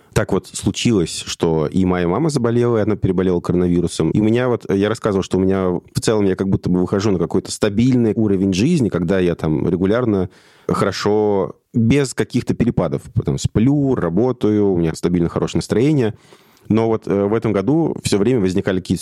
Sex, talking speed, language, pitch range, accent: male, 185 wpm, Russian, 85-110 Hz, native